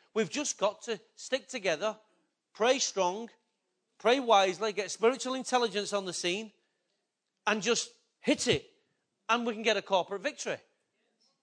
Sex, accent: male, British